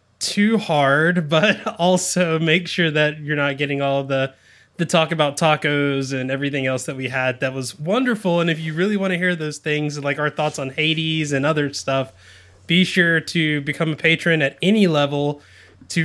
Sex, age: male, 20-39